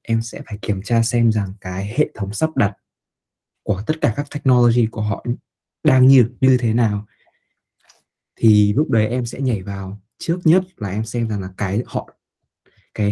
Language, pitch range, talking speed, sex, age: Vietnamese, 105-135 Hz, 190 wpm, male, 20-39